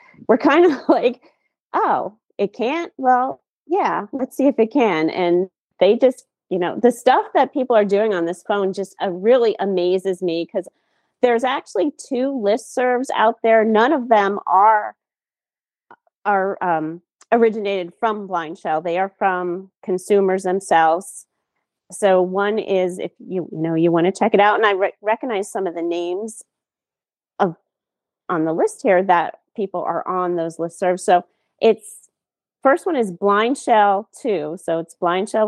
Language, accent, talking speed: English, American, 165 wpm